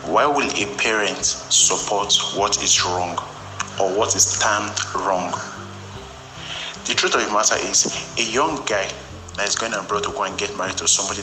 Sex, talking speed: male, 175 wpm